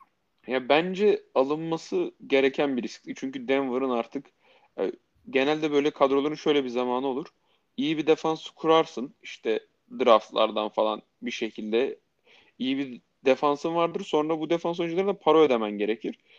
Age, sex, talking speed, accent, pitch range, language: 30-49, male, 135 wpm, native, 115-170 Hz, Turkish